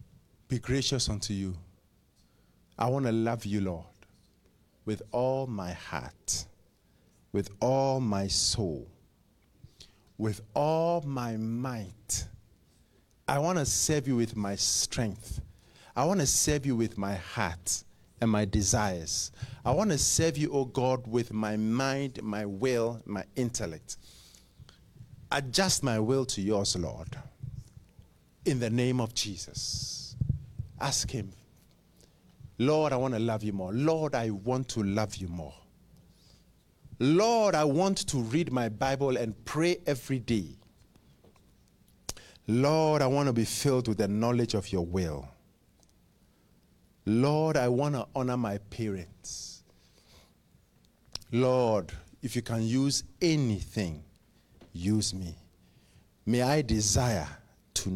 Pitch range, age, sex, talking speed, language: 100-130 Hz, 50-69, male, 130 wpm, English